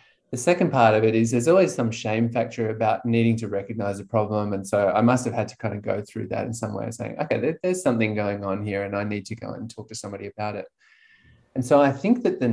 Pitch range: 110-130 Hz